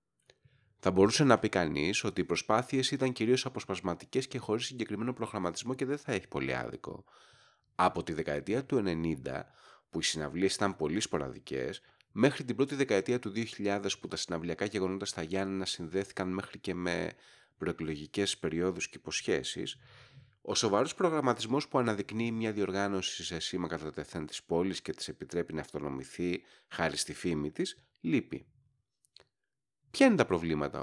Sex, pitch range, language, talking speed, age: male, 85-125 Hz, Greek, 155 wpm, 30-49